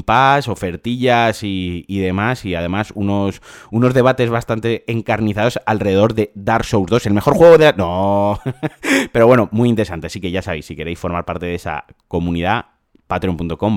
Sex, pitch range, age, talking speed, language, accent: male, 100-120 Hz, 30-49, 165 wpm, Spanish, Spanish